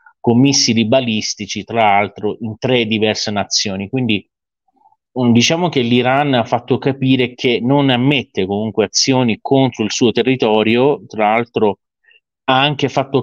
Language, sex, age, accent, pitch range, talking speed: Italian, male, 30-49, native, 105-130 Hz, 135 wpm